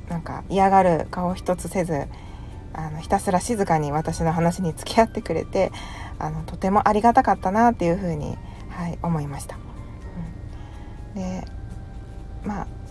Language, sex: Japanese, female